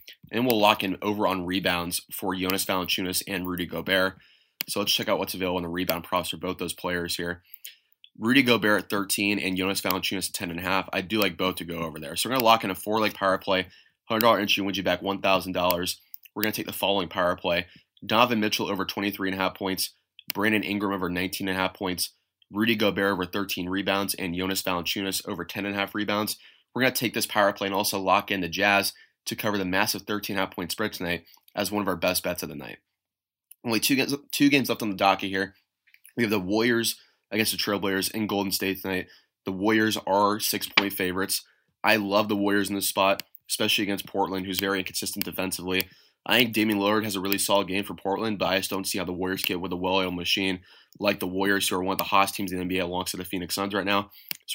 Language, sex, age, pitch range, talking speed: English, male, 20-39, 95-105 Hz, 220 wpm